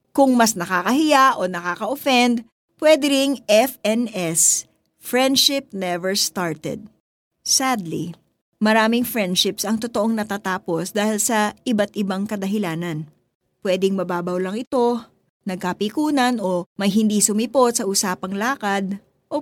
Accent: native